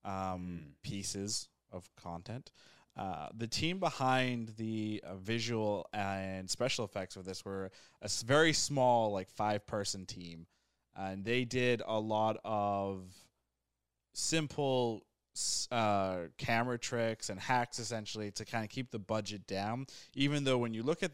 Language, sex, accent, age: English, male, American, 20-39